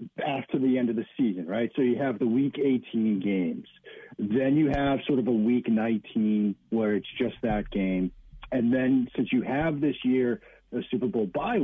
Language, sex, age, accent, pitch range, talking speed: English, male, 50-69, American, 120-160 Hz, 195 wpm